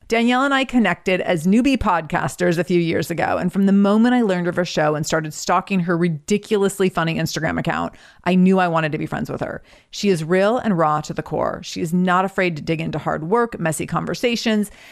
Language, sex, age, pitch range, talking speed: English, female, 30-49, 165-210 Hz, 225 wpm